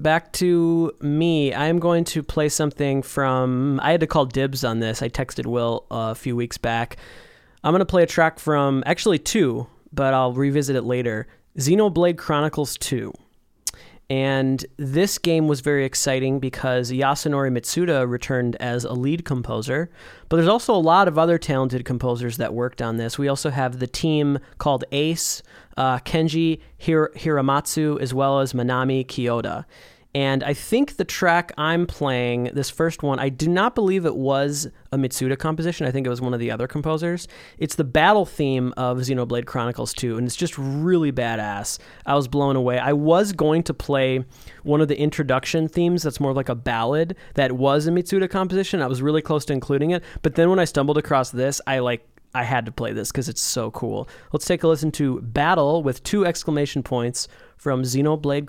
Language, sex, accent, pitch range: English, male, American, 125-160 Hz